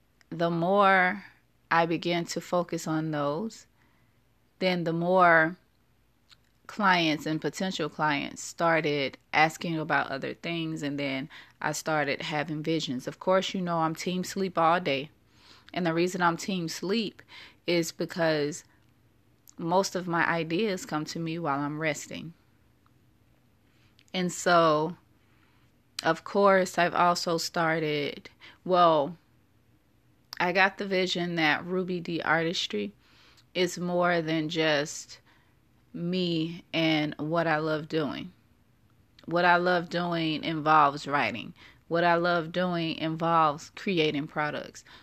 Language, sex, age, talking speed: English, female, 20-39, 125 wpm